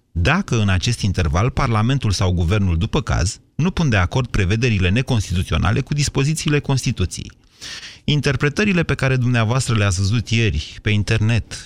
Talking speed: 140 wpm